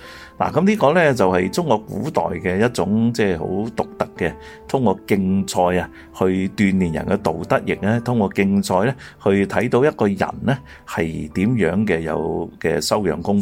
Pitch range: 85-125 Hz